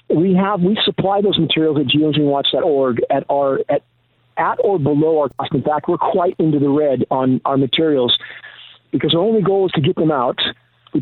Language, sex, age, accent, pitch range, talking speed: English, male, 50-69, American, 140-170 Hz, 195 wpm